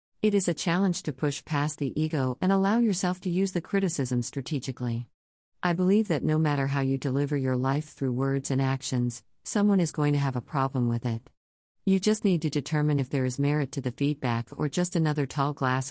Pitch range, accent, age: 130-160 Hz, American, 50-69